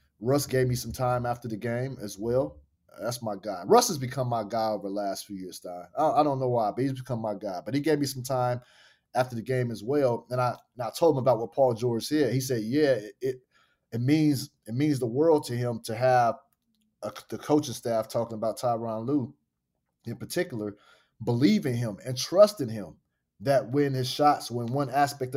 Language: English